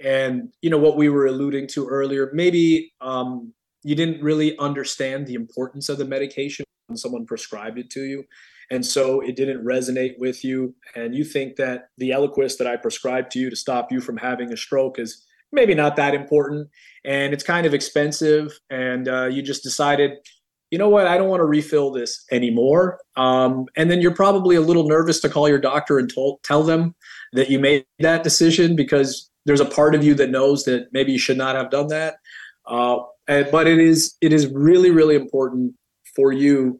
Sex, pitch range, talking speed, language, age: male, 130-155 Hz, 200 wpm, English, 30-49